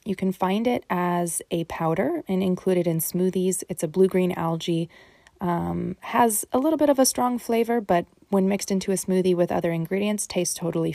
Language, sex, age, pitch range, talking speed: English, female, 20-39, 175-200 Hz, 205 wpm